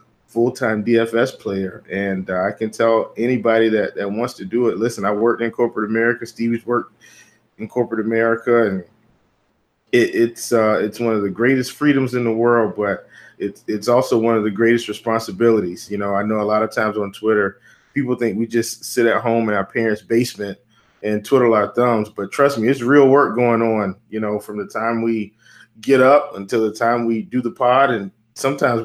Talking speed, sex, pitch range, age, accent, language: 205 wpm, male, 110-120 Hz, 20-39, American, English